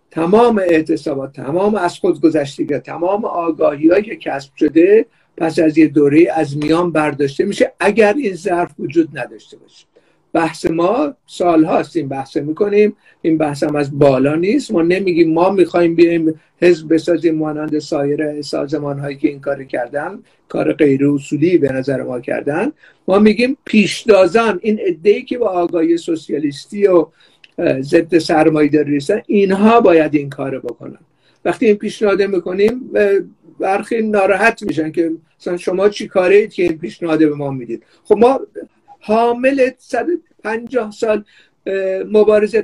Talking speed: 140 wpm